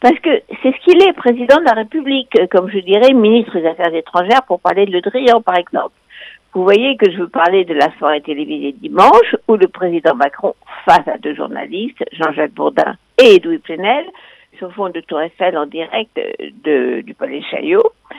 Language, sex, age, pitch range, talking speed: French, female, 60-79, 185-270 Hz, 200 wpm